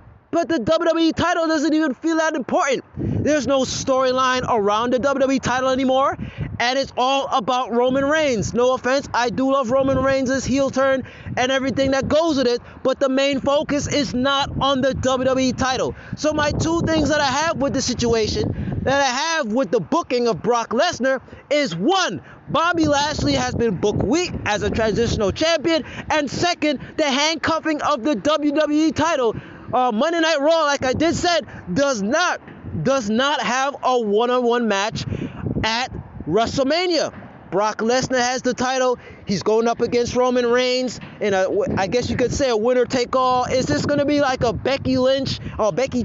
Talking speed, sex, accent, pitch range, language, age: 180 wpm, male, American, 250-300 Hz, English, 20-39